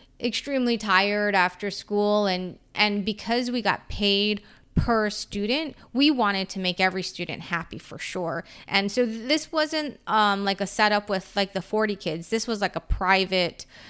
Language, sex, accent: English, female, American